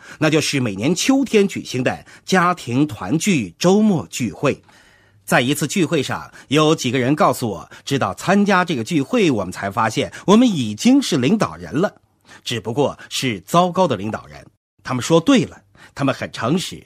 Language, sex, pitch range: Chinese, male, 140-215 Hz